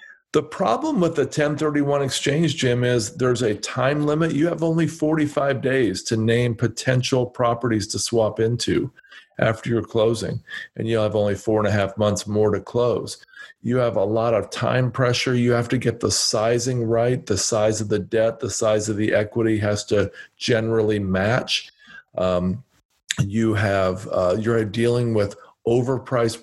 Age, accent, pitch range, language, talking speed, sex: 40-59, American, 105-125 Hz, English, 170 wpm, male